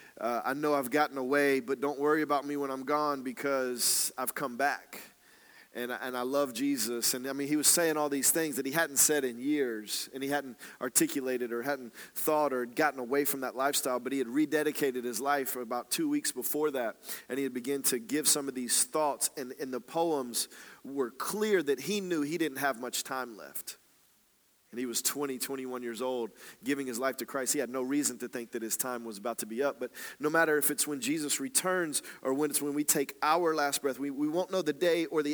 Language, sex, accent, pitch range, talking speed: English, male, American, 130-155 Hz, 240 wpm